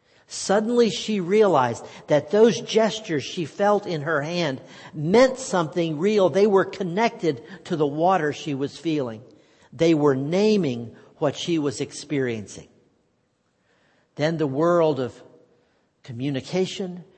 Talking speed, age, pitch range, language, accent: 120 wpm, 50-69, 130-180 Hz, English, American